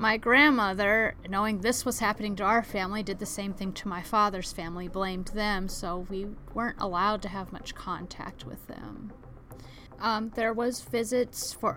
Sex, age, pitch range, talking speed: female, 30-49, 180-210 Hz, 175 wpm